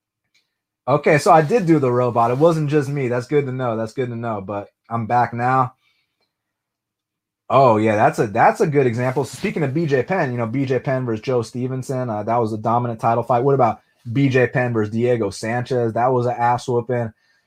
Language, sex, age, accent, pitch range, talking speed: English, male, 30-49, American, 115-145 Hz, 205 wpm